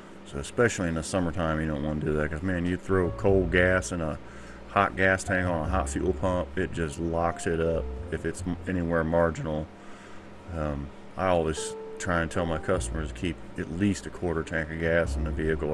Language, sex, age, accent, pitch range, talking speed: English, male, 30-49, American, 80-90 Hz, 215 wpm